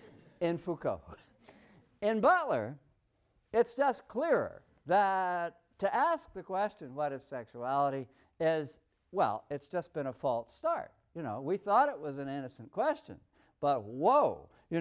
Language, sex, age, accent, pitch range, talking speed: English, male, 60-79, American, 130-205 Hz, 140 wpm